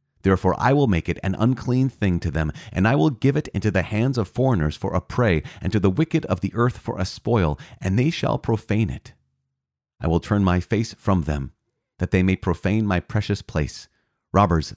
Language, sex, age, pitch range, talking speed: English, male, 30-49, 80-110 Hz, 215 wpm